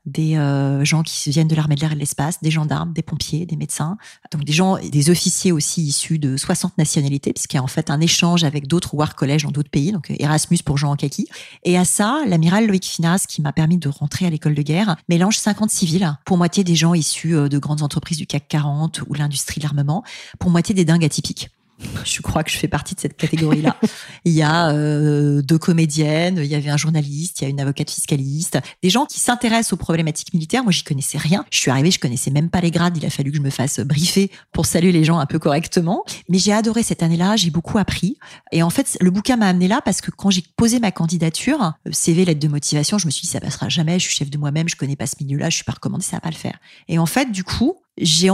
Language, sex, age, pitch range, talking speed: French, female, 30-49, 150-185 Hz, 260 wpm